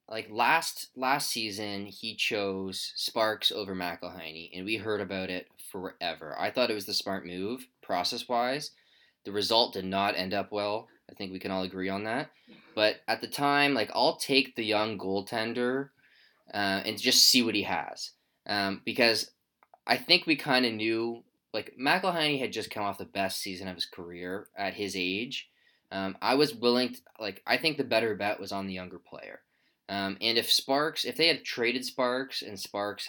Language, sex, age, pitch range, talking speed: English, male, 20-39, 95-125 Hz, 190 wpm